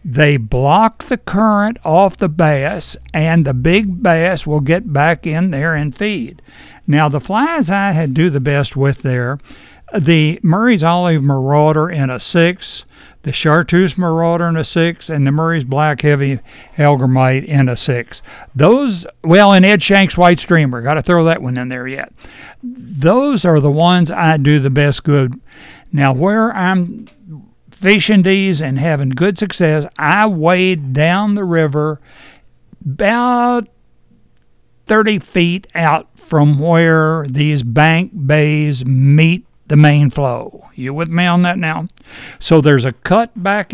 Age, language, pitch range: 60-79, English, 145-190 Hz